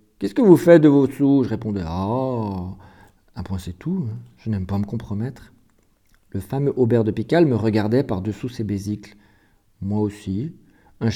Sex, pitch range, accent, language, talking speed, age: male, 100-130 Hz, French, French, 205 wpm, 40-59